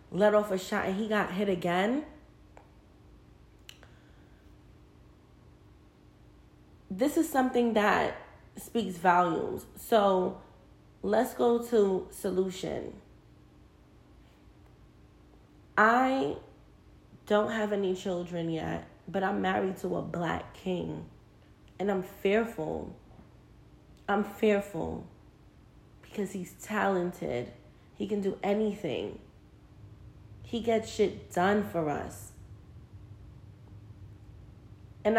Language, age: English, 20-39